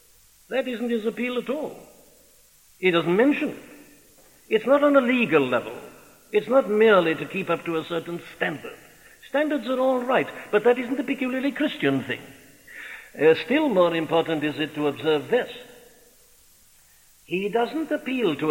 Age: 60-79